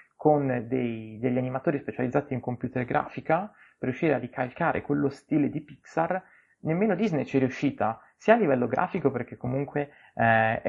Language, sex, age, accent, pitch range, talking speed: Italian, male, 20-39, native, 120-145 Hz, 155 wpm